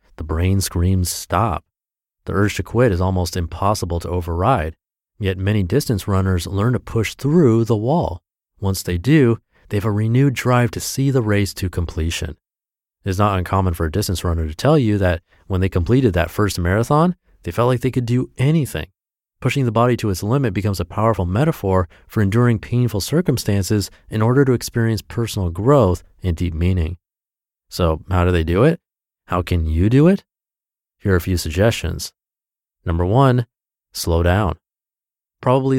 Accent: American